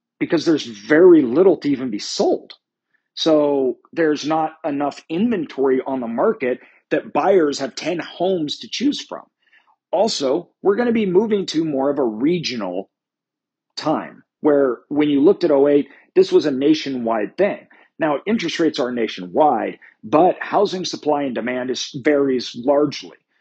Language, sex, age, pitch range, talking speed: English, male, 40-59, 135-210 Hz, 150 wpm